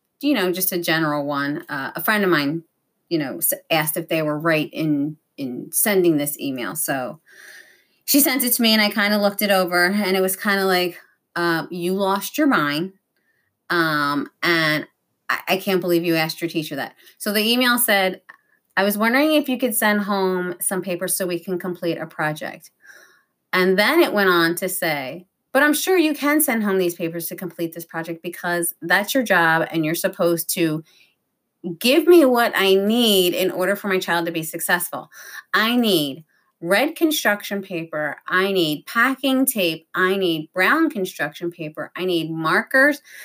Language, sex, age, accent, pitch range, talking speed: English, female, 30-49, American, 170-225 Hz, 185 wpm